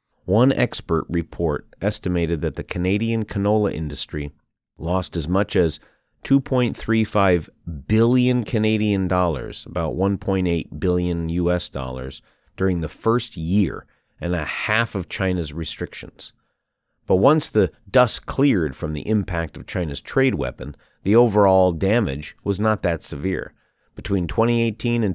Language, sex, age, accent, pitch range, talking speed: English, male, 30-49, American, 85-110 Hz, 130 wpm